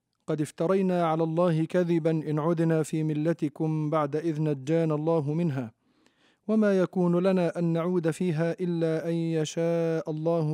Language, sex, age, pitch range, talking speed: Arabic, male, 40-59, 150-180 Hz, 135 wpm